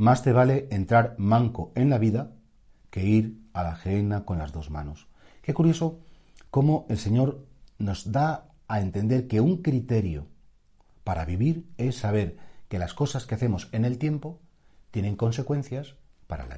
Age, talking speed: 40-59, 165 wpm